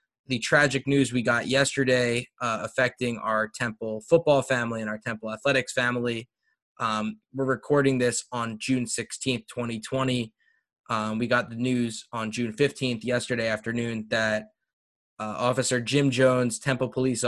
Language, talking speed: English, 145 wpm